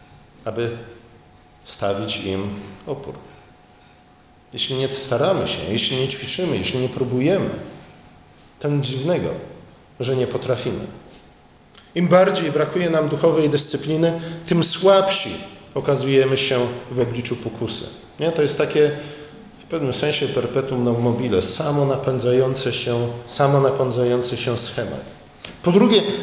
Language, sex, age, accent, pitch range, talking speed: Polish, male, 40-59, native, 125-165 Hz, 110 wpm